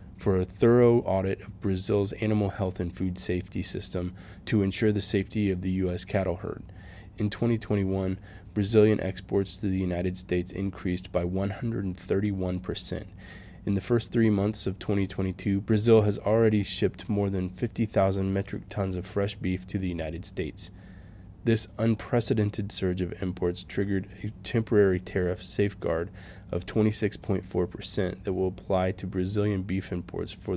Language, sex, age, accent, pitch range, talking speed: English, male, 20-39, American, 90-100 Hz, 150 wpm